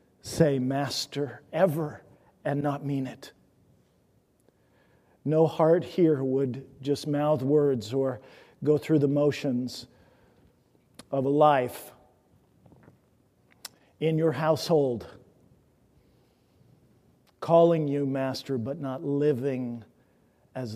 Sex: male